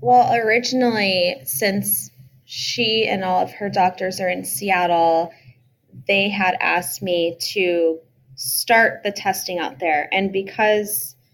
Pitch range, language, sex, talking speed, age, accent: 170-205 Hz, English, female, 125 wpm, 20-39, American